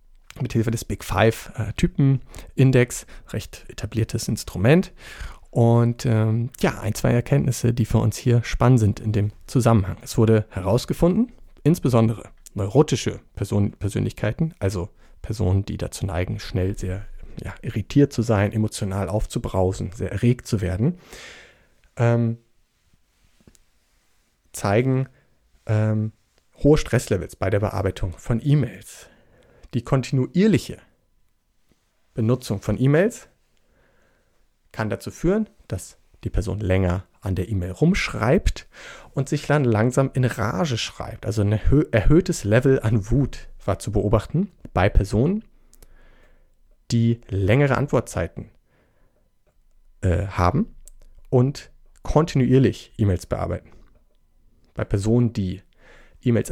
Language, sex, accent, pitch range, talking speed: German, male, German, 100-130 Hz, 110 wpm